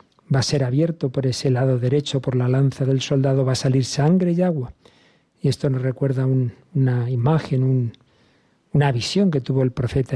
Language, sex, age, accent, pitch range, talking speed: Spanish, male, 50-69, Spanish, 130-150 Hz, 185 wpm